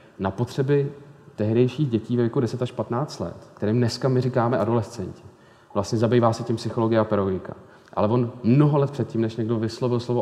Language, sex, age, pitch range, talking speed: Czech, male, 30-49, 105-120 Hz, 180 wpm